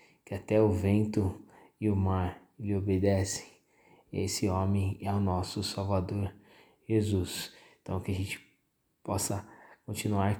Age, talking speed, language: 20-39, 125 wpm, Portuguese